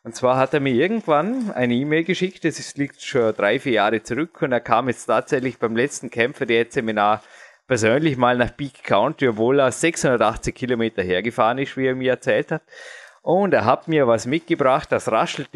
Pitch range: 115-140 Hz